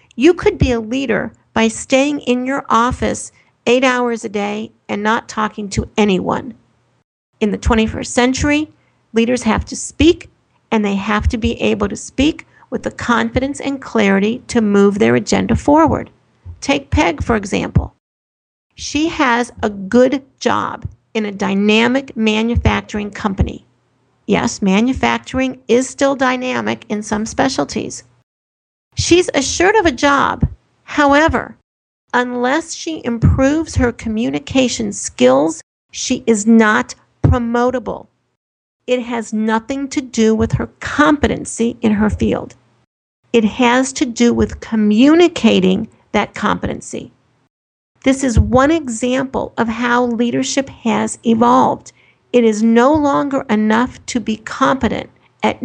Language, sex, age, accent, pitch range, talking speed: English, female, 50-69, American, 220-265 Hz, 130 wpm